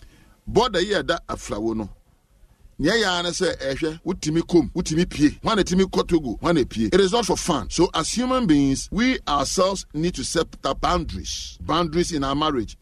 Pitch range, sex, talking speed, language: 135-180 Hz, male, 195 wpm, English